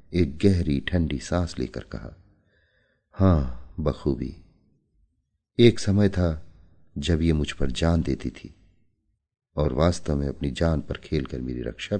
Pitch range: 75-105 Hz